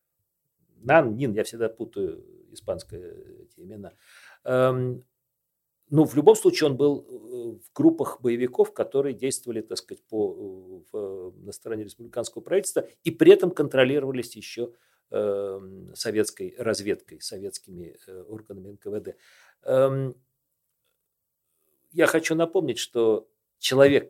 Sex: male